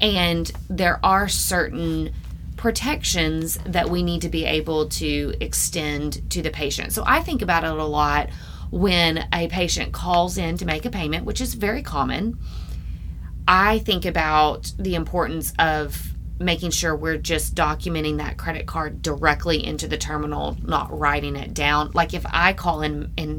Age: 30-49